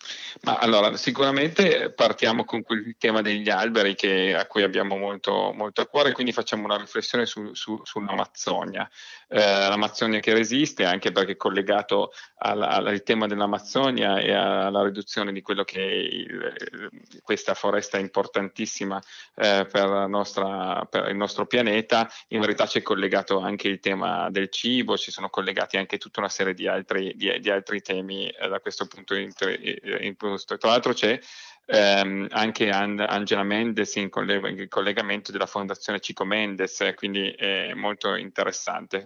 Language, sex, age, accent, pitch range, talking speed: Italian, male, 30-49, native, 100-115 Hz, 160 wpm